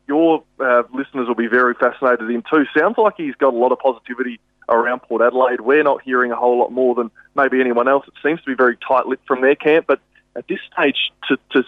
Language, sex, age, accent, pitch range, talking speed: English, male, 20-39, Australian, 120-140 Hz, 235 wpm